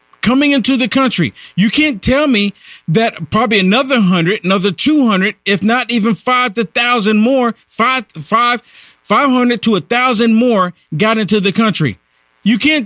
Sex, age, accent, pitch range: male, 50-69, American, 175-245 Hz